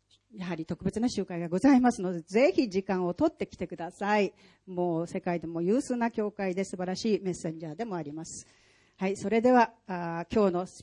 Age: 40-59